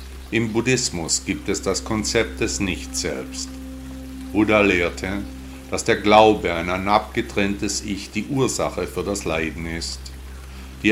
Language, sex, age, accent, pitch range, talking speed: German, male, 50-69, German, 65-105 Hz, 135 wpm